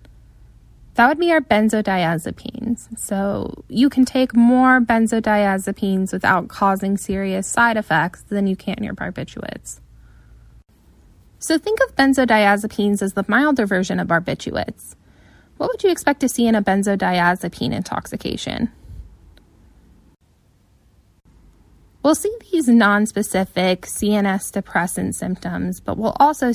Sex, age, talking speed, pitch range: female, 10-29, 120 wpm, 185-240 Hz